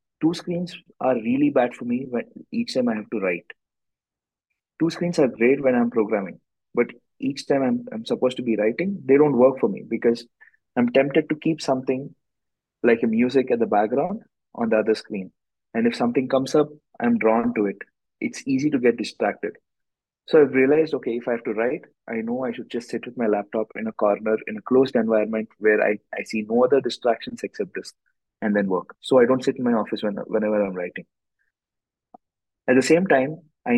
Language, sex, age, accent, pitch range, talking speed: English, male, 20-39, Indian, 115-155 Hz, 210 wpm